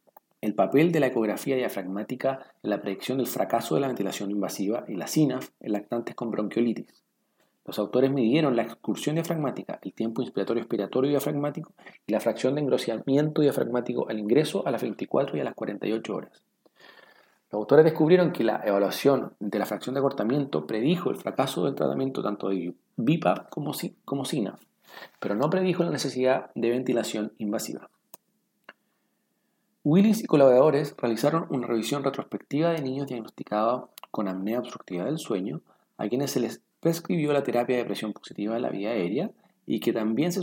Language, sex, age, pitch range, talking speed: Spanish, male, 40-59, 110-150 Hz, 165 wpm